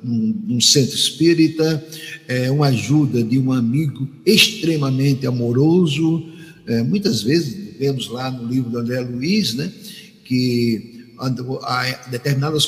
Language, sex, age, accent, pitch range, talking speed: Portuguese, male, 60-79, Brazilian, 130-175 Hz, 125 wpm